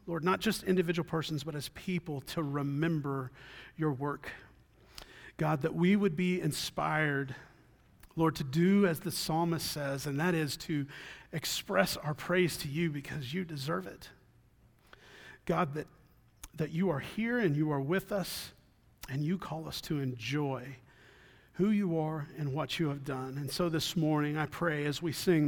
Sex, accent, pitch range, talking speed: male, American, 130-160 Hz, 170 wpm